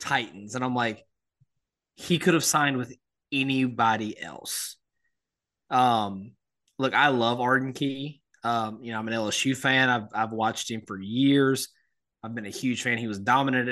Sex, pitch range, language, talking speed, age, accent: male, 115-135 Hz, English, 165 wpm, 20-39, American